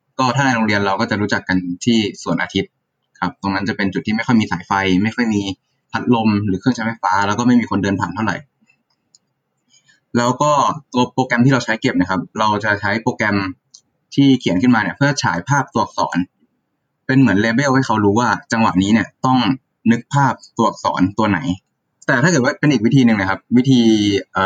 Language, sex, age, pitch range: Thai, male, 20-39, 100-130 Hz